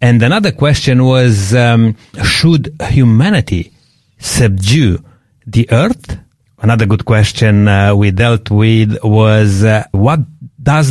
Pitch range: 110-140 Hz